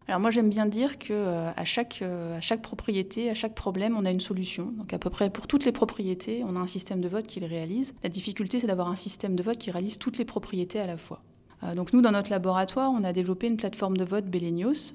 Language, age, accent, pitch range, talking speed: French, 30-49, French, 175-225 Hz, 260 wpm